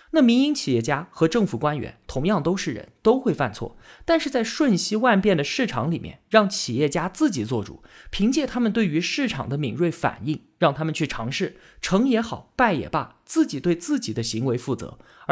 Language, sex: Chinese, male